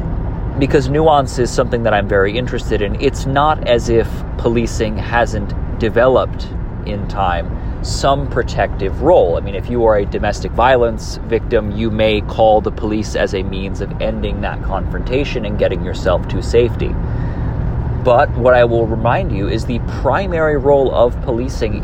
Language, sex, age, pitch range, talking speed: English, male, 30-49, 95-120 Hz, 160 wpm